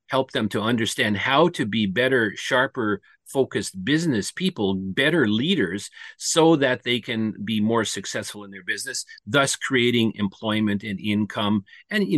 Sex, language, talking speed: male, English, 155 wpm